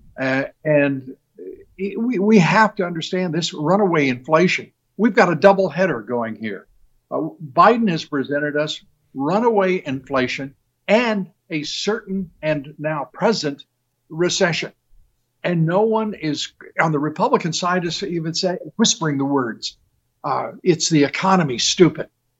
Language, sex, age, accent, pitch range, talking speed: English, male, 60-79, American, 125-180 Hz, 135 wpm